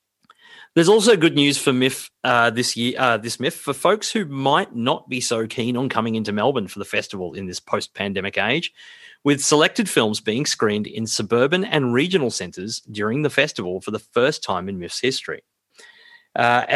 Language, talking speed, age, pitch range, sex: English, 190 wpm, 30-49, 110-155 Hz, male